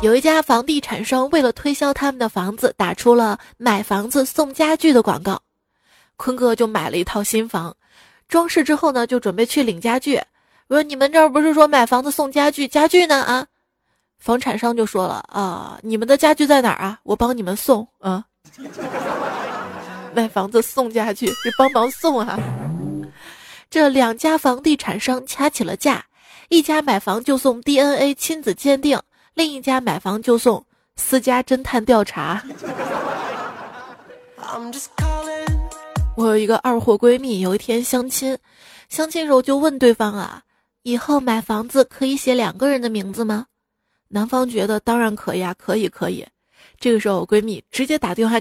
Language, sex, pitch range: Chinese, female, 220-285 Hz